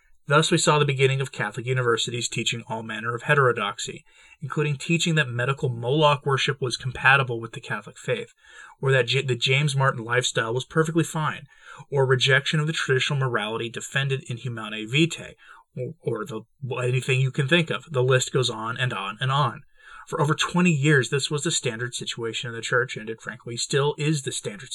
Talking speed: 190 wpm